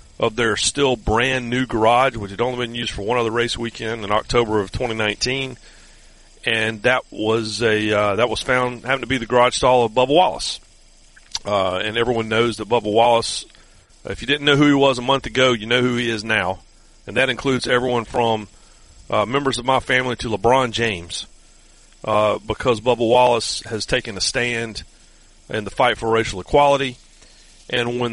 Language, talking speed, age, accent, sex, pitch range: English, 190 wpm, 40-59, American, male, 110-125 Hz